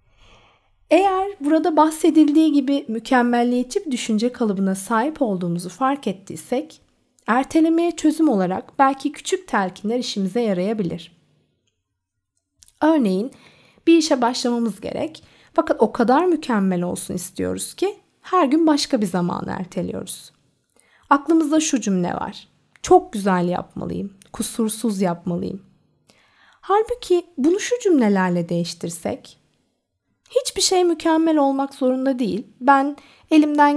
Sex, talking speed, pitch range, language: female, 105 wpm, 190-300 Hz, Turkish